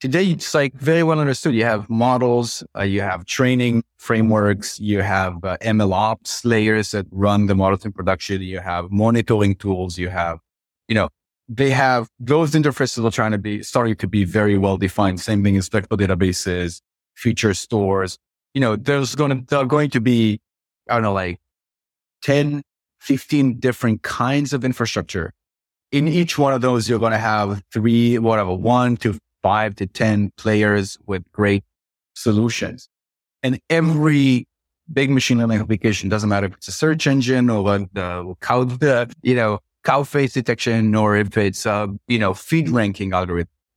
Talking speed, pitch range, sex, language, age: 170 wpm, 100-125 Hz, male, English, 30-49